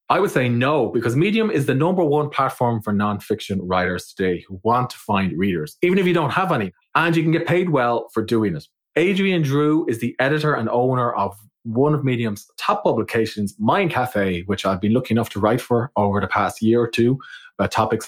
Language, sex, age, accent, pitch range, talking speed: English, male, 30-49, Irish, 110-150 Hz, 220 wpm